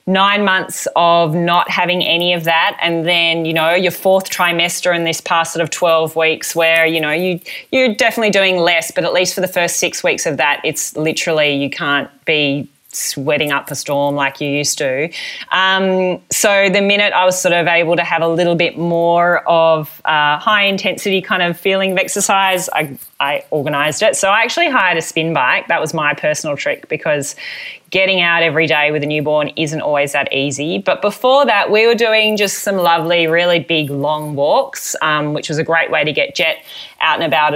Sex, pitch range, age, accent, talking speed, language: female, 155-185 Hz, 20-39, Australian, 210 wpm, English